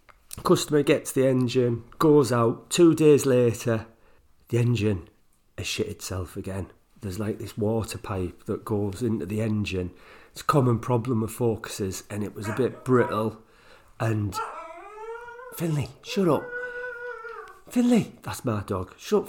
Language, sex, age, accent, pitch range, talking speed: English, male, 40-59, British, 105-140 Hz, 145 wpm